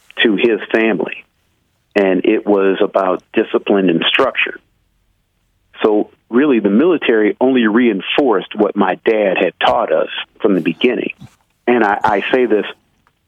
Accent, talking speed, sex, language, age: American, 135 wpm, male, English, 40-59